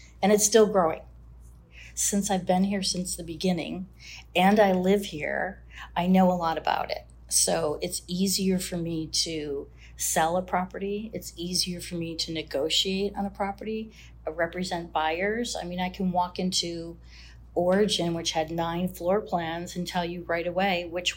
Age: 40-59